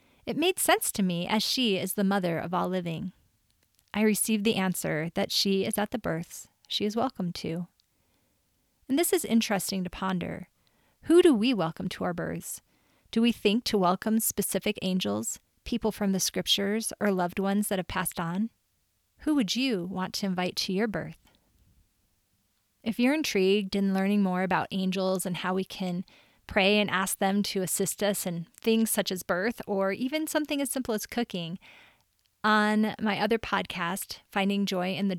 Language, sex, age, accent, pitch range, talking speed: English, female, 30-49, American, 180-215 Hz, 180 wpm